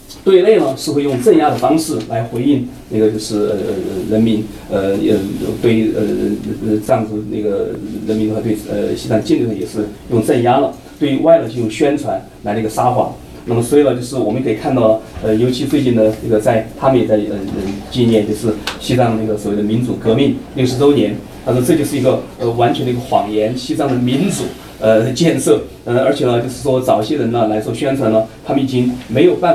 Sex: male